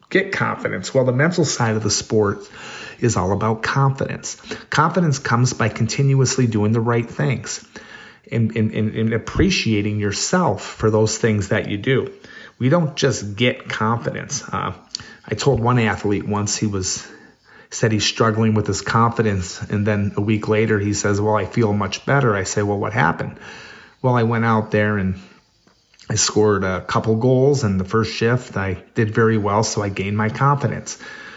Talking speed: 175 wpm